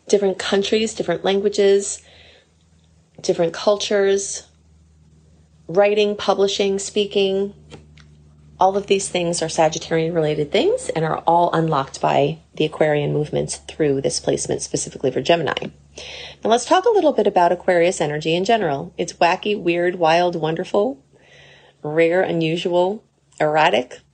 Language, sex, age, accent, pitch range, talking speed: English, female, 30-49, American, 155-205 Hz, 125 wpm